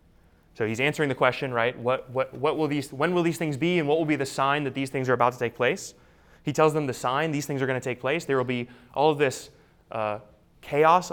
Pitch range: 125-155 Hz